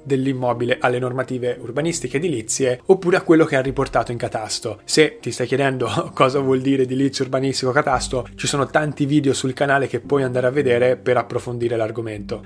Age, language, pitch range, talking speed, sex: 20-39, Italian, 120-150 Hz, 175 wpm, male